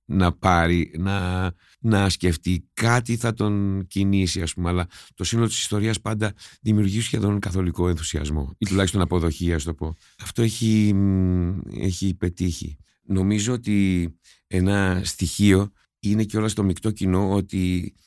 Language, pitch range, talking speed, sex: Greek, 90-105 Hz, 140 wpm, male